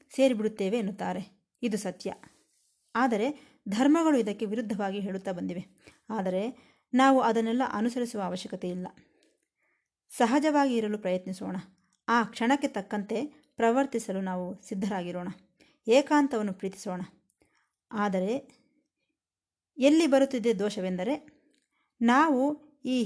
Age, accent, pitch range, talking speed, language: 20-39, native, 195-265 Hz, 85 wpm, Kannada